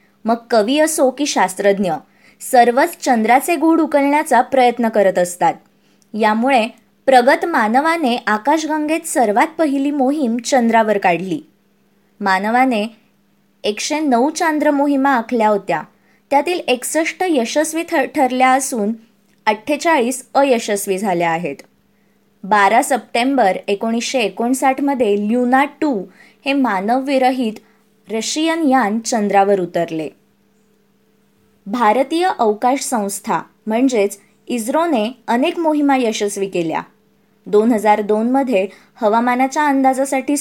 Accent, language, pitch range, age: native, Marathi, 210-270 Hz, 20-39